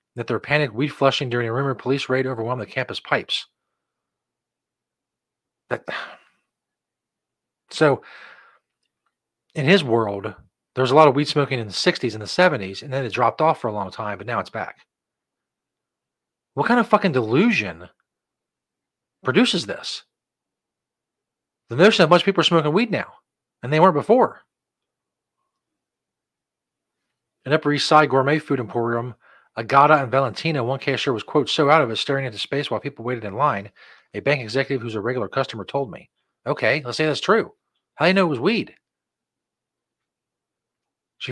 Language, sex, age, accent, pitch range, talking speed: English, male, 40-59, American, 120-150 Hz, 165 wpm